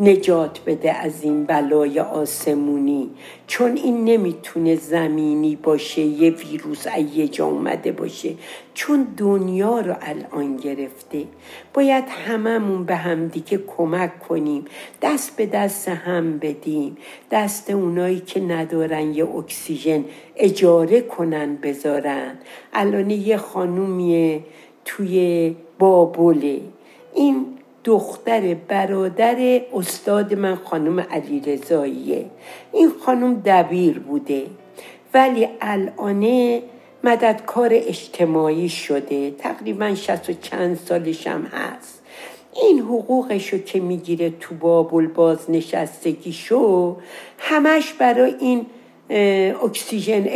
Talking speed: 100 wpm